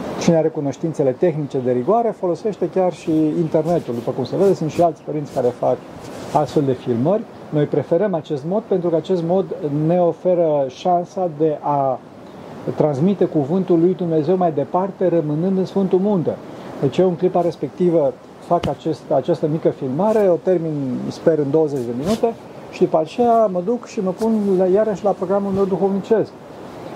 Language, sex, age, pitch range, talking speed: Romanian, male, 40-59, 155-190 Hz, 170 wpm